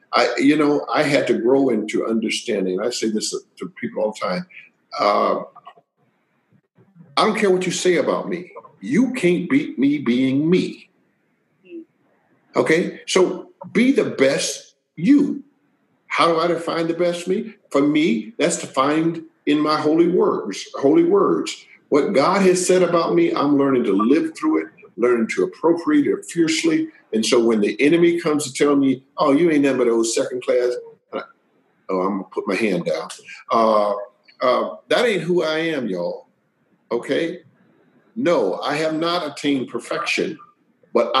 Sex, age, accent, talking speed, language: male, 50-69, American, 160 wpm, English